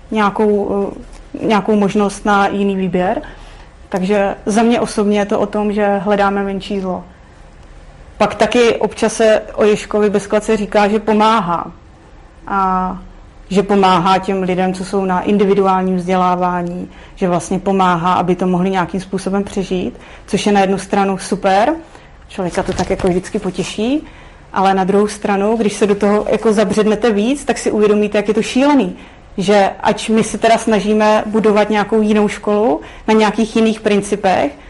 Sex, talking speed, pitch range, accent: female, 155 wpm, 190-215 Hz, native